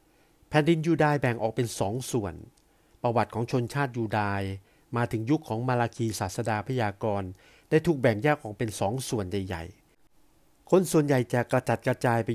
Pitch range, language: 105-140 Hz, Thai